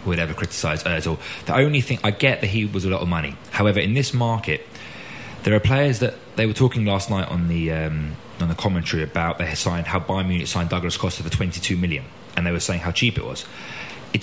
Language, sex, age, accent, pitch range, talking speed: English, male, 20-39, British, 90-110 Hz, 240 wpm